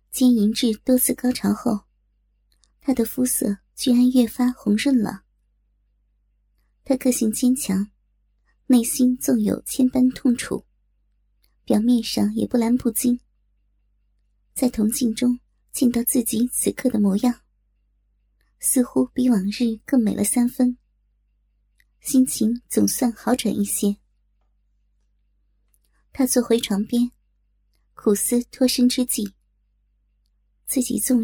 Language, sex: Chinese, male